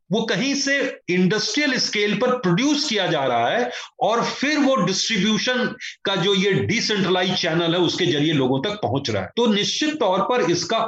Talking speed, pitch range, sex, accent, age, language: 180 wpm, 170-220 Hz, male, native, 30-49, Hindi